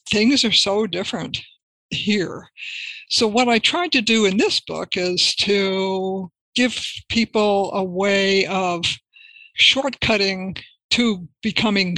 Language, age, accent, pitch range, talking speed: English, 60-79, American, 185-225 Hz, 120 wpm